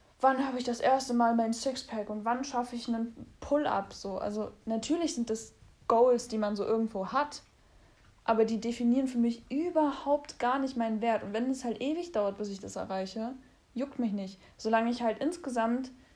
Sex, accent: female, German